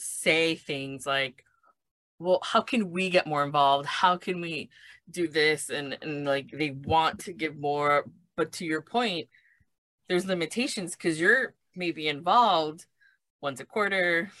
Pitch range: 140-180 Hz